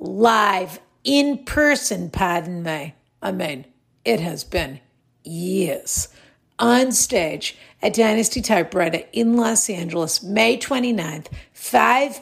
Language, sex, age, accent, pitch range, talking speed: English, female, 50-69, American, 180-245 Hz, 110 wpm